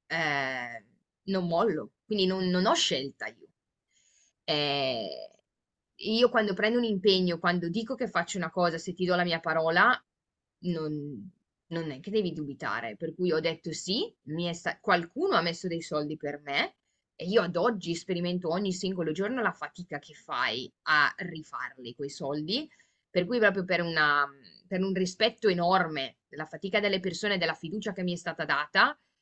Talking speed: 165 wpm